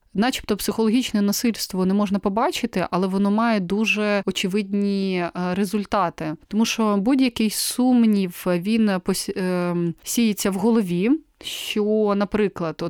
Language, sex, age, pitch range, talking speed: Ukrainian, female, 30-49, 190-235 Hz, 100 wpm